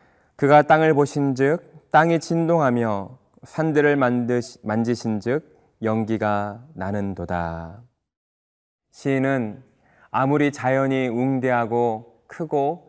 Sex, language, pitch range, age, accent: male, Korean, 110-145 Hz, 20-39, native